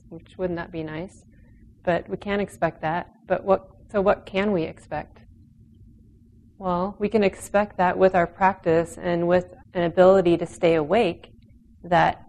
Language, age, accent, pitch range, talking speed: English, 30-49, American, 115-180 Hz, 160 wpm